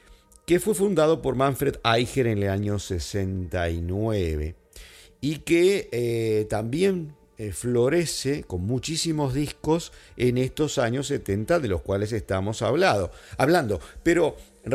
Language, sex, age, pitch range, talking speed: English, male, 50-69, 100-150 Hz, 120 wpm